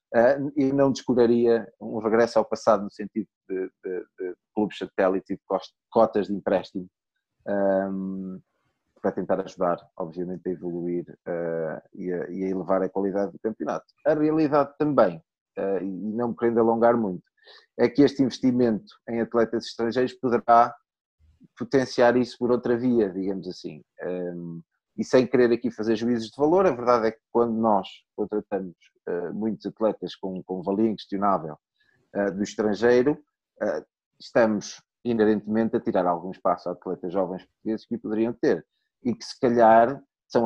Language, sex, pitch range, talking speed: Portuguese, male, 95-120 Hz, 145 wpm